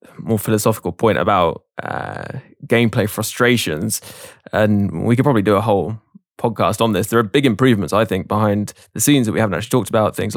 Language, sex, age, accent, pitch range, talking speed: English, male, 10-29, British, 100-115 Hz, 190 wpm